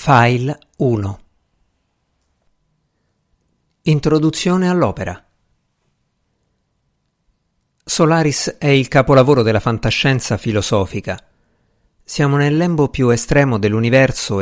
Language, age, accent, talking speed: Italian, 50-69, native, 70 wpm